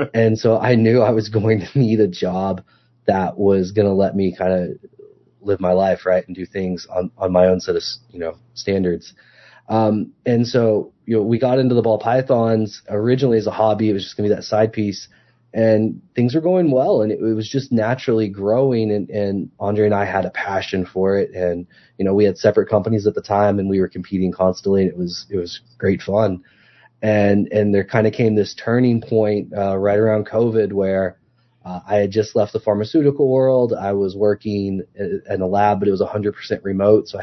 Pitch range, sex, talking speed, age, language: 95-115 Hz, male, 220 wpm, 20-39, English